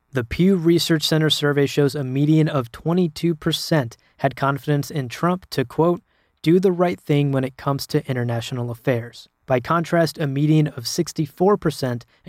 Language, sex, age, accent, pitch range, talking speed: English, male, 20-39, American, 130-155 Hz, 155 wpm